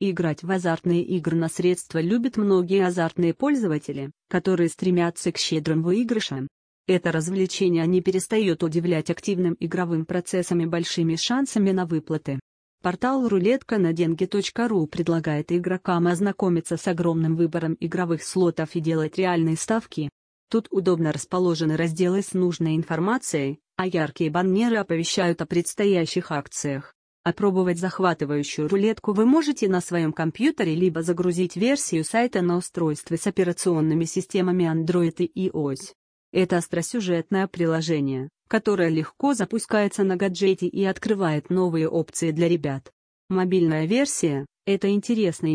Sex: female